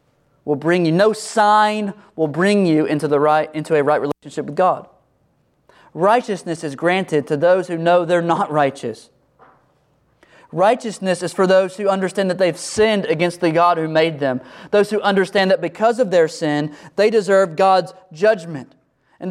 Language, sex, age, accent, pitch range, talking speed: English, male, 30-49, American, 175-225 Hz, 170 wpm